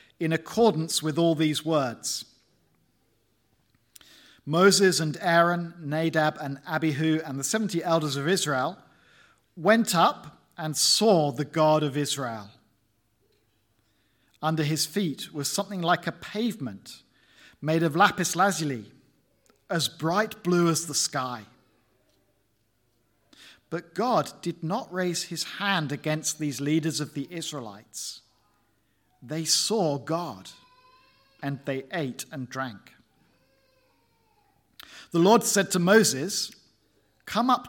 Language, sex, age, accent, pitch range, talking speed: English, male, 50-69, British, 130-180 Hz, 115 wpm